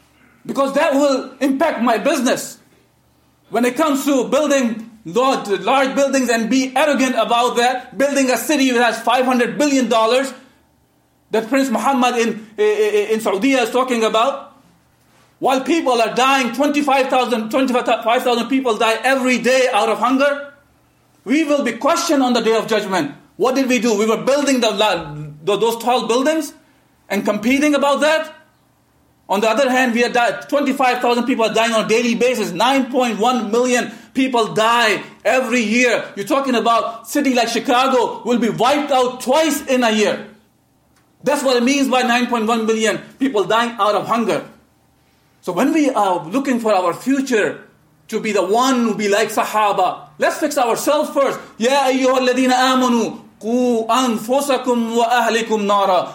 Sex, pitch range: male, 225-270 Hz